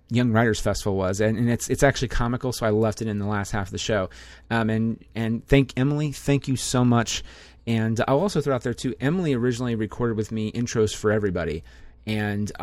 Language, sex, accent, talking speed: English, male, American, 220 wpm